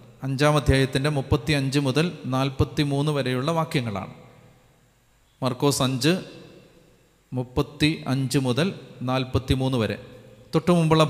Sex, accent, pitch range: male, native, 125-155 Hz